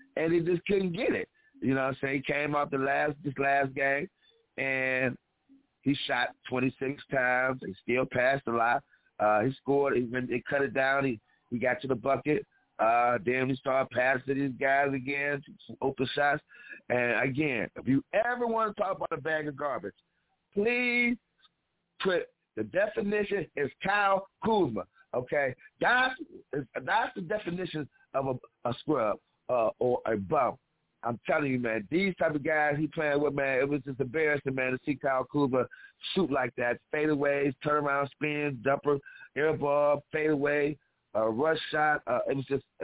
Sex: male